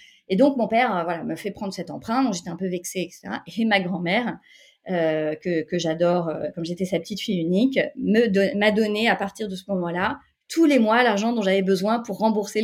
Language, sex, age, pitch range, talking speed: French, female, 30-49, 180-235 Hz, 225 wpm